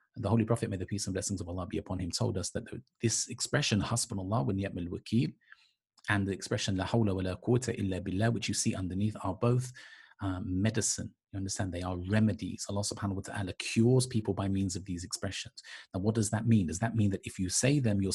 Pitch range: 95-120 Hz